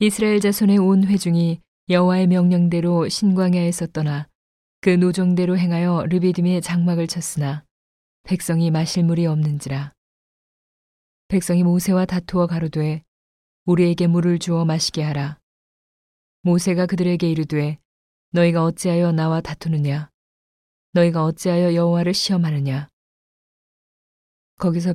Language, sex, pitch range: Korean, female, 155-180 Hz